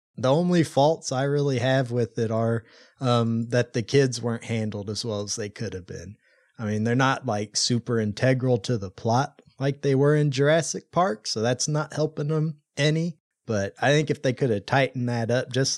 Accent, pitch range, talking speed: American, 115-140 Hz, 210 wpm